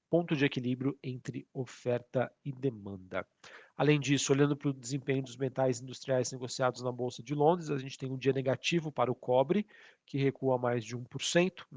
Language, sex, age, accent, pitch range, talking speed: Portuguese, male, 40-59, Brazilian, 130-145 Hz, 180 wpm